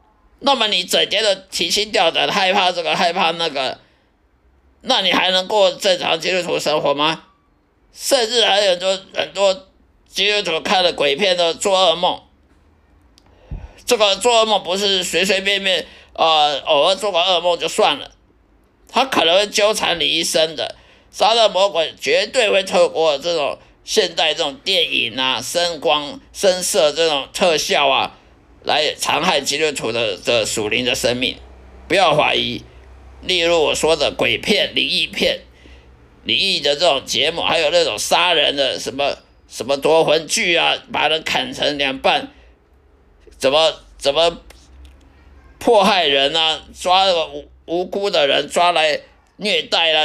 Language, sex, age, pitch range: Chinese, male, 50-69, 130-195 Hz